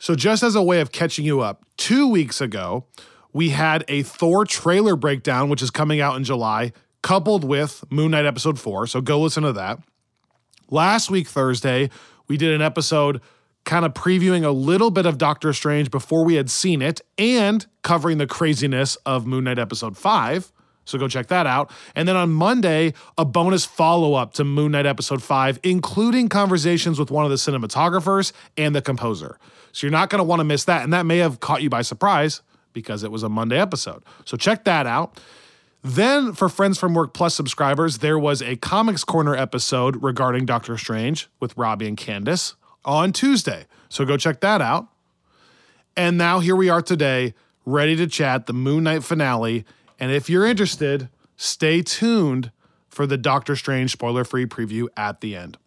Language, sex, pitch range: English, male, 130-170 Hz